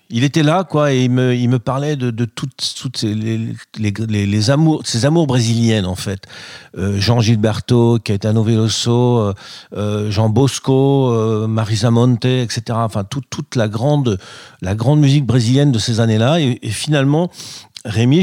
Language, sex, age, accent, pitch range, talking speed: French, male, 40-59, French, 115-140 Hz, 175 wpm